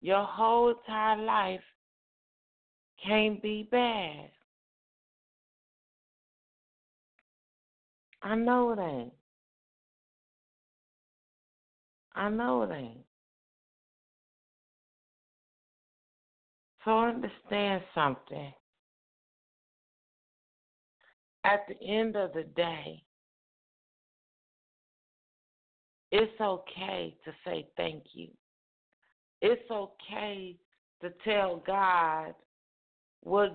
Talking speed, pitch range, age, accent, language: 60 wpm, 185-220 Hz, 50-69, American, English